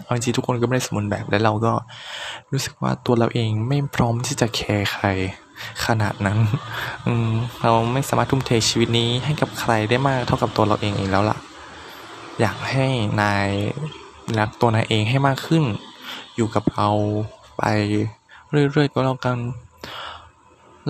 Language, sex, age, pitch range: Thai, male, 20-39, 105-125 Hz